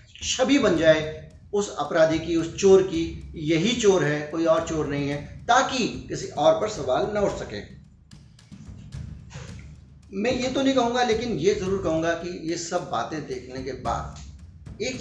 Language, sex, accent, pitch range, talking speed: Hindi, male, native, 130-175 Hz, 170 wpm